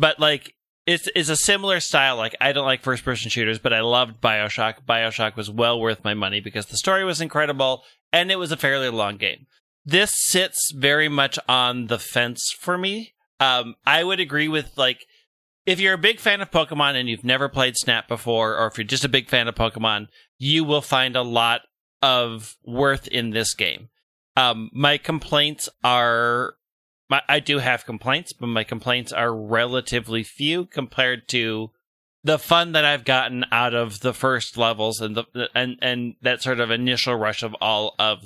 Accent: American